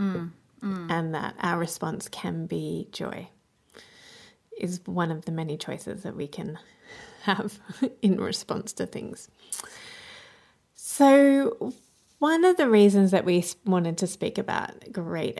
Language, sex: English, female